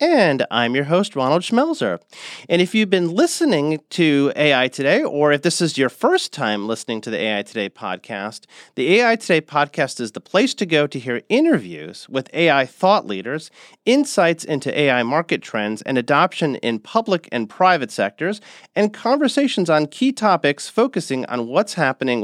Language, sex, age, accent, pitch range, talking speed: English, male, 30-49, American, 125-180 Hz, 175 wpm